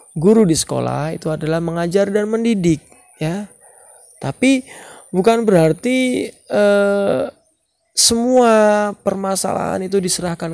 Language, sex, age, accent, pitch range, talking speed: Indonesian, male, 20-39, native, 160-205 Hz, 95 wpm